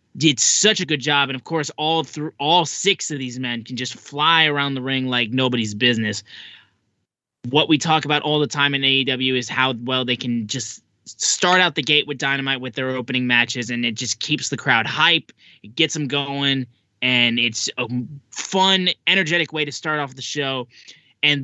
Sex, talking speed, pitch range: male, 200 wpm, 125-155 Hz